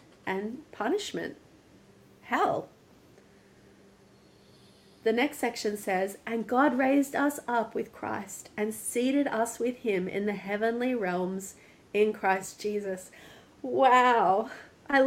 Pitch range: 190-245 Hz